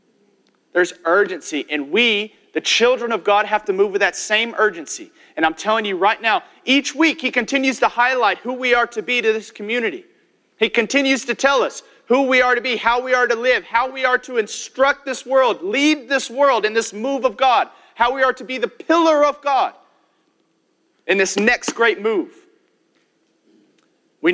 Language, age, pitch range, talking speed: English, 40-59, 215-290 Hz, 195 wpm